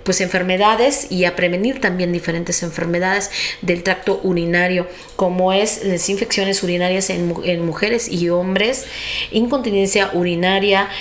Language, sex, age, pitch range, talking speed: Spanish, female, 40-59, 180-215 Hz, 125 wpm